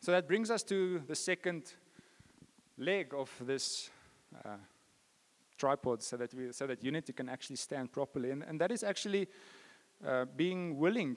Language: English